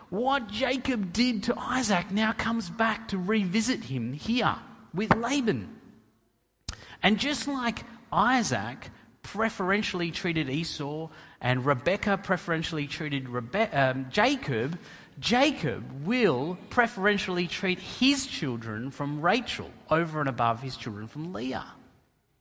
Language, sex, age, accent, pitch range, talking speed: English, male, 40-59, Australian, 135-210 Hz, 110 wpm